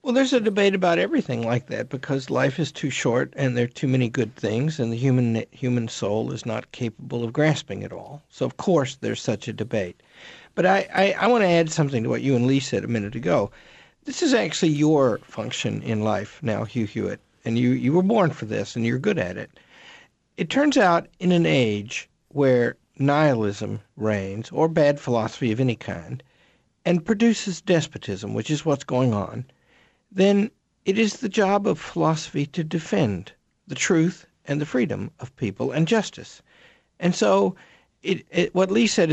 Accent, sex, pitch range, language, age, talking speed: American, male, 120-185 Hz, English, 50-69, 190 wpm